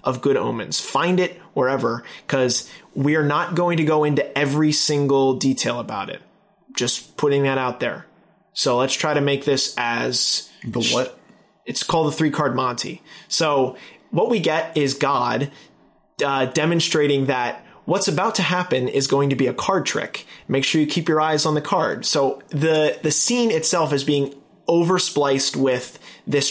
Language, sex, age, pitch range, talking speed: English, male, 20-39, 135-170 Hz, 180 wpm